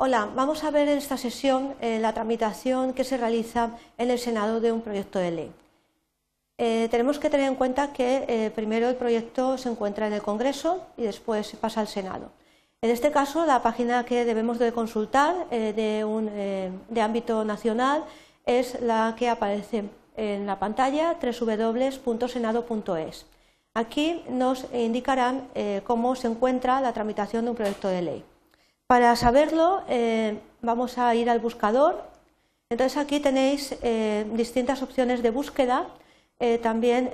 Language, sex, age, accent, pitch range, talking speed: Spanish, female, 40-59, Spanish, 225-260 Hz, 160 wpm